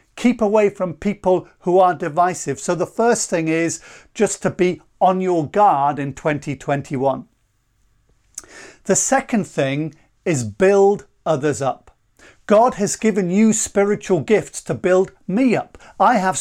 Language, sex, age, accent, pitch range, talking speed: English, male, 50-69, British, 155-210 Hz, 145 wpm